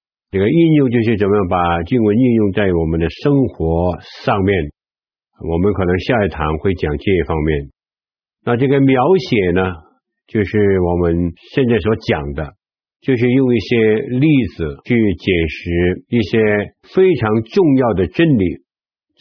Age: 60-79